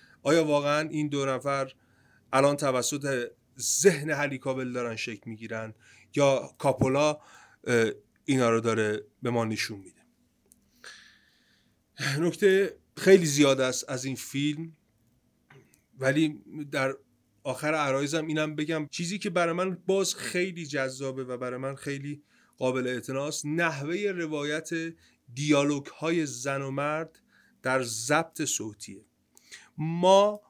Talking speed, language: 120 wpm, Persian